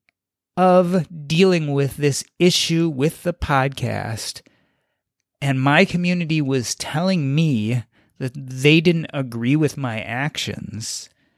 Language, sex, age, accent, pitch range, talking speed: English, male, 30-49, American, 140-185 Hz, 110 wpm